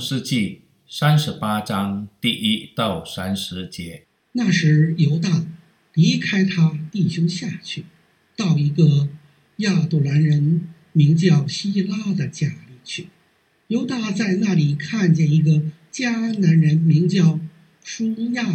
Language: Chinese